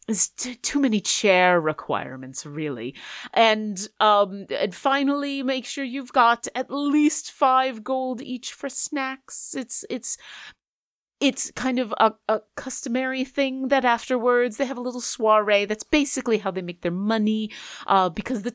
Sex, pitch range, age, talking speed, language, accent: female, 185-260 Hz, 30-49, 155 wpm, English, American